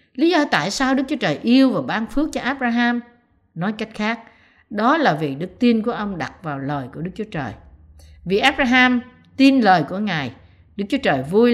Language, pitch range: Vietnamese, 170-245 Hz